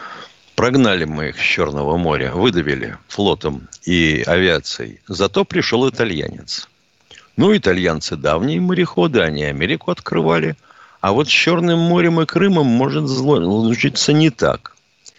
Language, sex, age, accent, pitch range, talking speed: Russian, male, 50-69, native, 90-145 Hz, 125 wpm